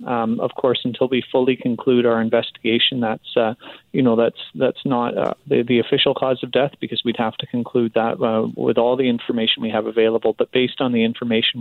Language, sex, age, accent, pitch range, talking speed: English, male, 30-49, American, 110-120 Hz, 215 wpm